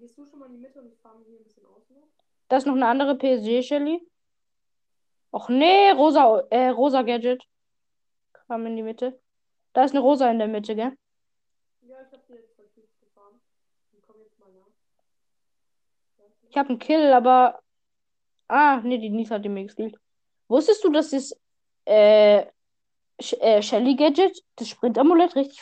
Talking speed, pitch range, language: 170 wpm, 220-295 Hz, German